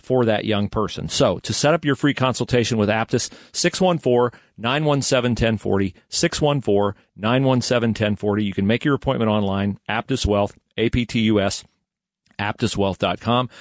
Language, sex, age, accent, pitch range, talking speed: English, male, 40-59, American, 100-125 Hz, 130 wpm